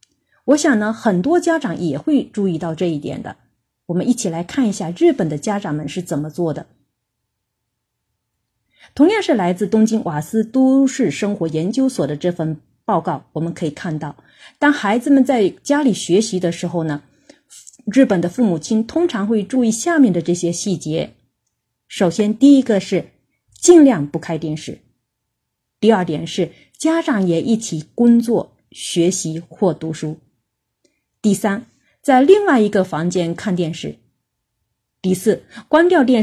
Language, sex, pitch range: Chinese, female, 160-250 Hz